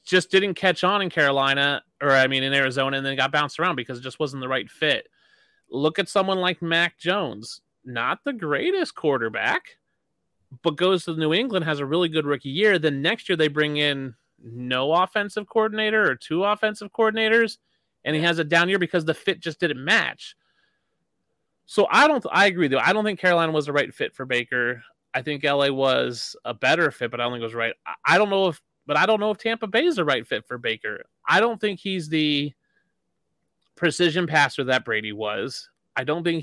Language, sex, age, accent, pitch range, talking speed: English, male, 30-49, American, 135-185 Hz, 215 wpm